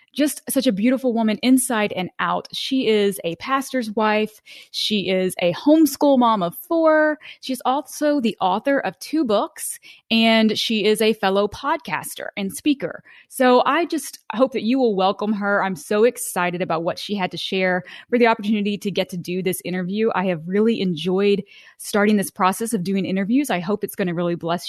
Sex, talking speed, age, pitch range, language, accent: female, 190 wpm, 20-39, 190-255 Hz, English, American